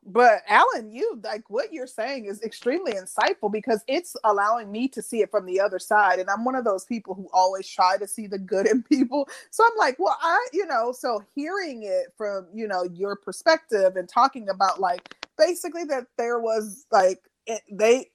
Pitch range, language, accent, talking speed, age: 190-240 Hz, English, American, 200 wpm, 30-49